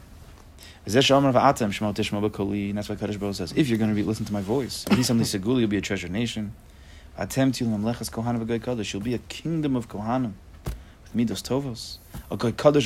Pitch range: 95-135 Hz